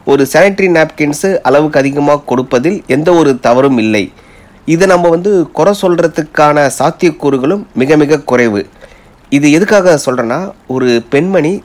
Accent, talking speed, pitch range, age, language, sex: native, 125 wpm, 120-160 Hz, 30-49, Tamil, male